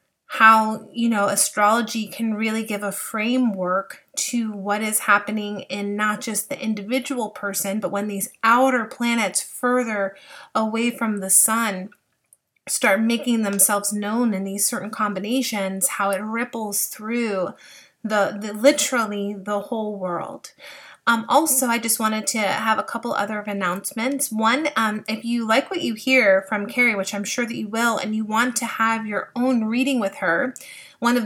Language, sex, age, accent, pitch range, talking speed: English, female, 30-49, American, 205-240 Hz, 165 wpm